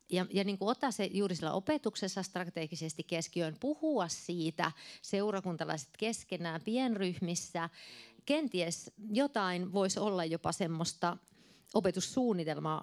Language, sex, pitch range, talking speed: Finnish, female, 155-210 Hz, 105 wpm